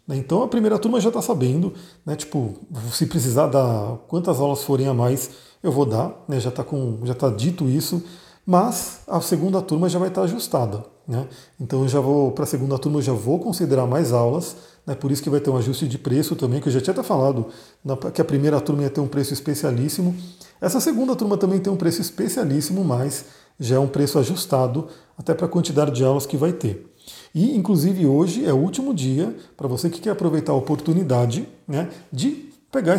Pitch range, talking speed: 135-180 Hz, 200 wpm